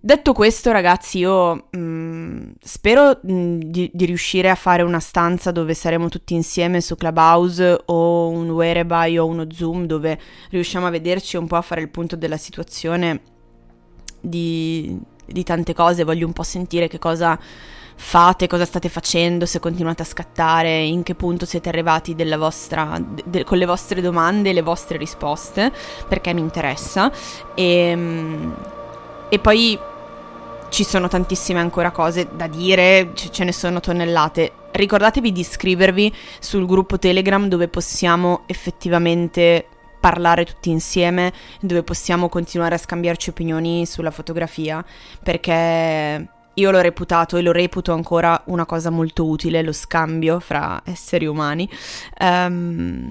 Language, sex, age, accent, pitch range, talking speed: Italian, female, 20-39, native, 165-180 Hz, 145 wpm